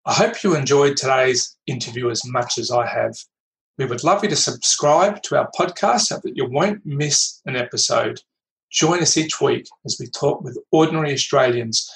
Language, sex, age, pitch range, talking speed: English, male, 40-59, 120-155 Hz, 185 wpm